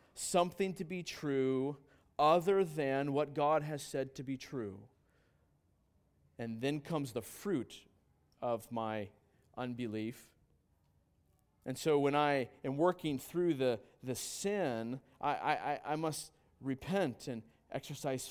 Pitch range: 120-170 Hz